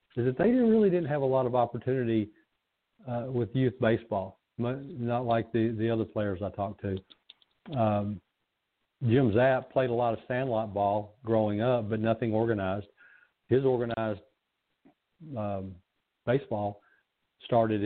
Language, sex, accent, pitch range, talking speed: English, male, American, 105-125 Hz, 150 wpm